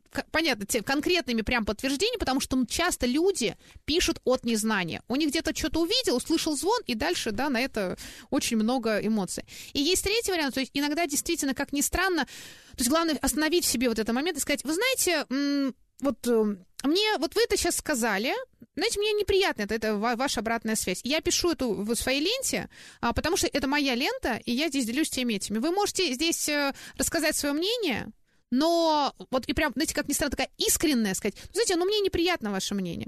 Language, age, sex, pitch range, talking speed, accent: Russian, 20-39, female, 240-335 Hz, 190 wpm, native